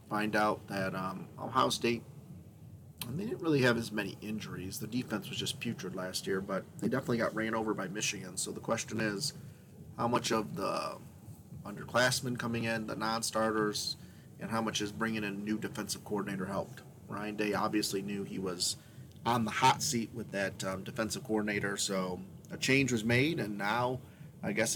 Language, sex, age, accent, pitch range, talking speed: English, male, 30-49, American, 105-130 Hz, 185 wpm